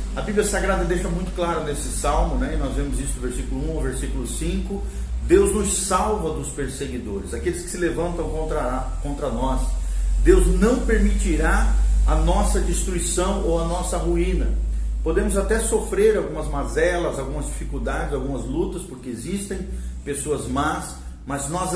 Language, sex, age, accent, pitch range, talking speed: Portuguese, male, 40-59, Brazilian, 140-190 Hz, 155 wpm